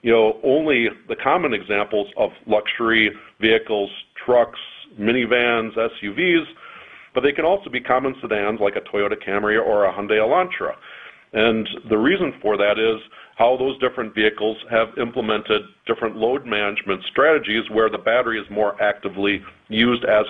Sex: male